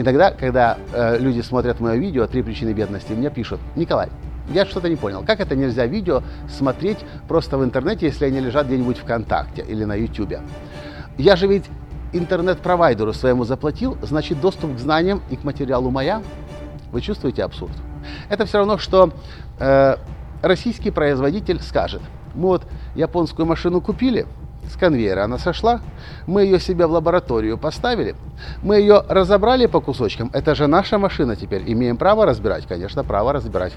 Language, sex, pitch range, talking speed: Russian, male, 105-165 Hz, 160 wpm